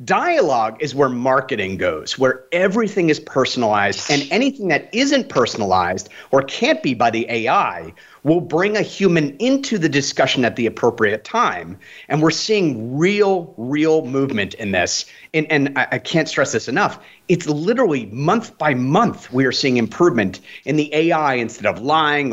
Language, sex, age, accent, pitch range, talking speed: English, male, 30-49, American, 135-205 Hz, 165 wpm